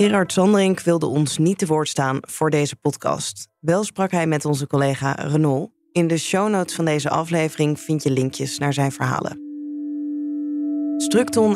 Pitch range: 145-190 Hz